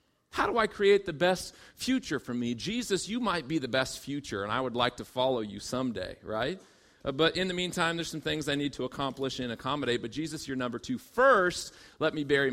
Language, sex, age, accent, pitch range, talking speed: English, male, 40-59, American, 135-195 Hz, 230 wpm